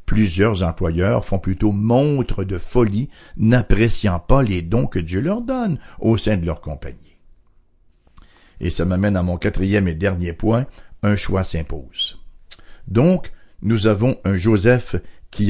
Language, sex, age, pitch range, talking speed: English, male, 60-79, 90-125 Hz, 145 wpm